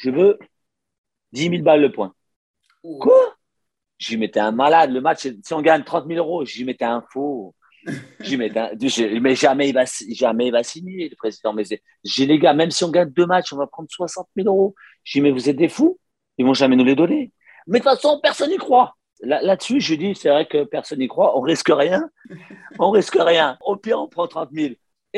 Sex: male